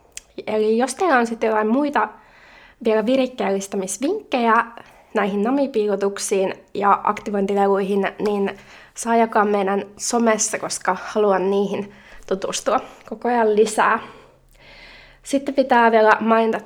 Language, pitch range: Finnish, 200-235 Hz